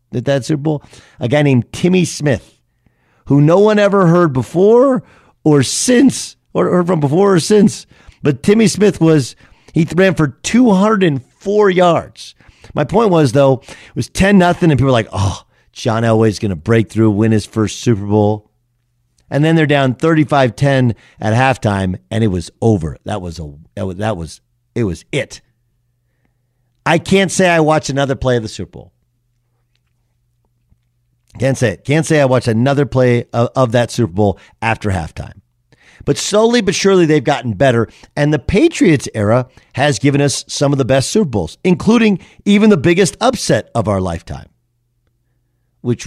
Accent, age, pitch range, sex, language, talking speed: American, 50-69, 115-155 Hz, male, English, 170 wpm